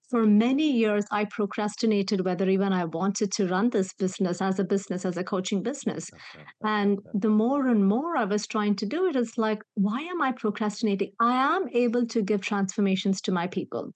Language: English